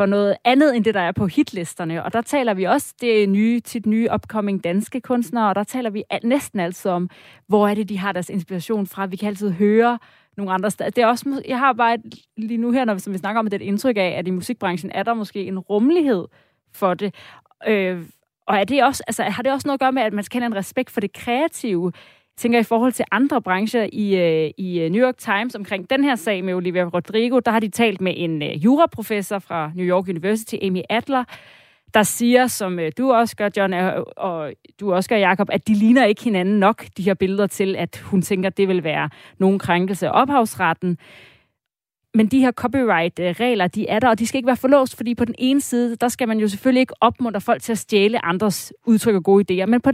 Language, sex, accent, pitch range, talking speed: Danish, female, native, 190-240 Hz, 235 wpm